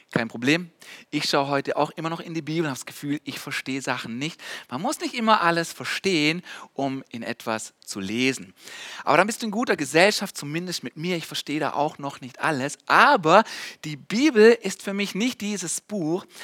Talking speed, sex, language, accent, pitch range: 205 wpm, male, German, German, 140-185 Hz